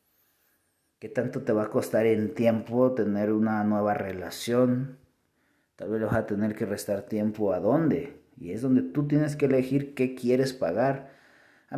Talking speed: 175 wpm